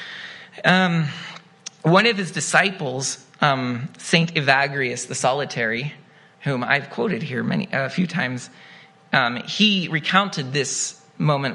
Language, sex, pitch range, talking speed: English, male, 155-205 Hz, 125 wpm